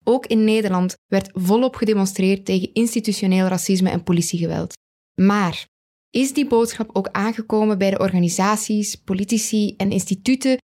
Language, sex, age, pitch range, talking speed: English, female, 10-29, 190-225 Hz, 130 wpm